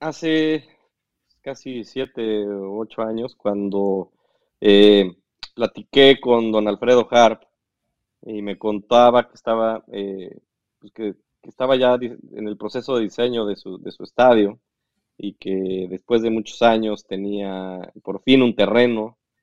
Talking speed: 140 wpm